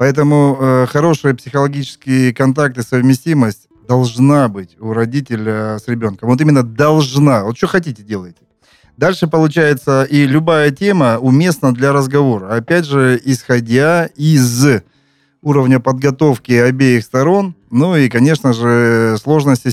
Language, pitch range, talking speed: Russian, 115-145 Hz, 120 wpm